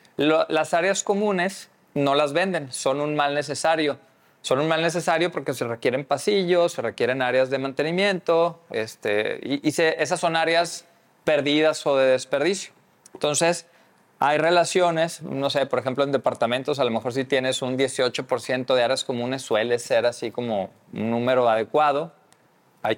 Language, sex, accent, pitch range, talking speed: Spanish, male, Mexican, 130-170 Hz, 160 wpm